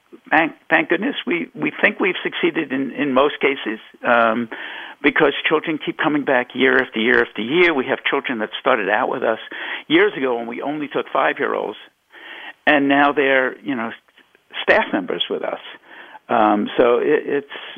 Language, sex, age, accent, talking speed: English, male, 50-69, American, 170 wpm